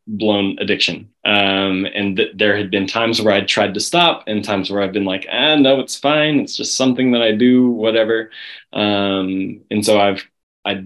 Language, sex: English, male